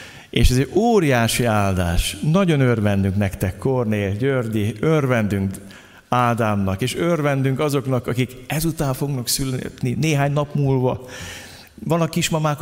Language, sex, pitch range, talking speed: Hungarian, male, 115-160 Hz, 115 wpm